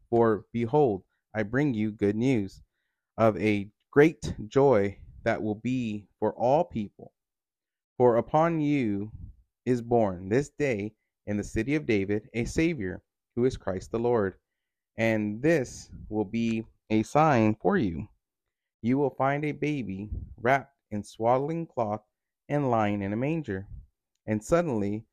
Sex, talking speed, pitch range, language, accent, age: male, 145 wpm, 105-135 Hz, English, American, 30-49